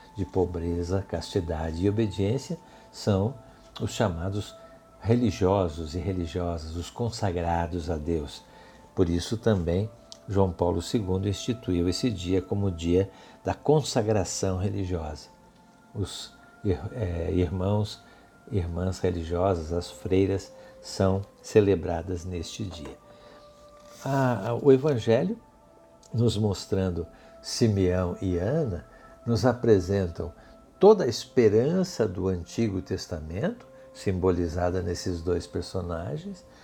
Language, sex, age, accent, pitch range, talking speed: Portuguese, male, 60-79, Brazilian, 90-110 Hz, 100 wpm